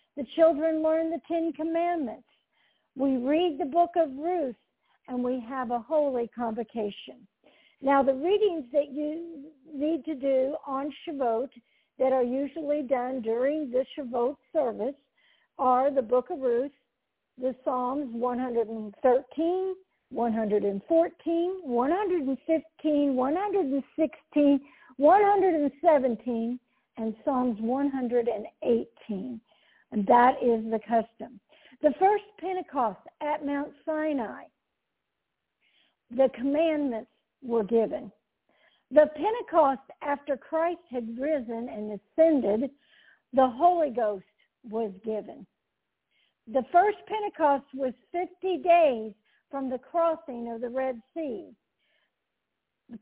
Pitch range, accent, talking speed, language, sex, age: 240-315 Hz, American, 105 wpm, English, female, 60-79